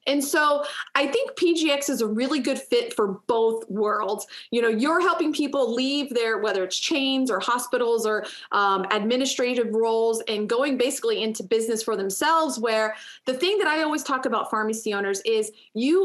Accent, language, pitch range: American, English, 220-310 Hz